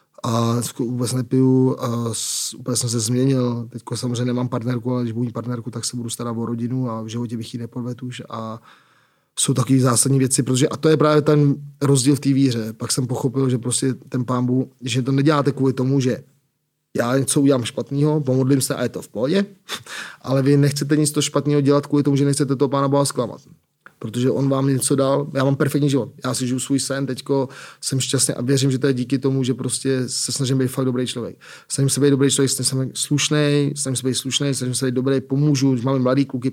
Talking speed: 220 wpm